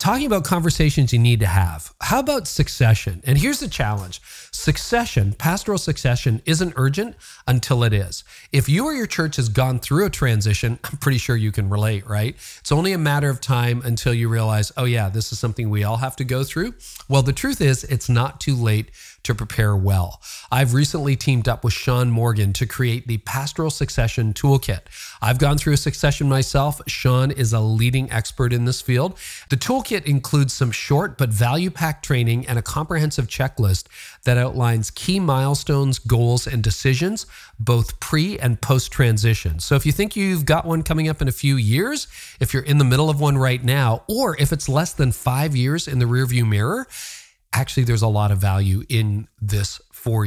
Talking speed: 195 wpm